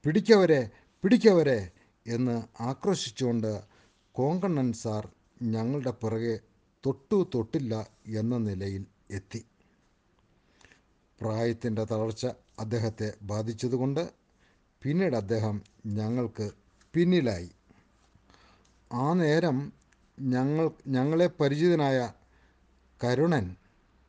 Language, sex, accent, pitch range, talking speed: Malayalam, male, native, 100-135 Hz, 65 wpm